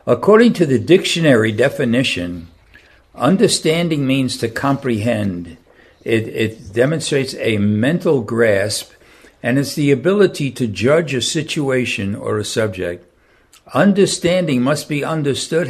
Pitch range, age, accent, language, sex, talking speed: 105-150 Hz, 60-79, American, English, male, 115 wpm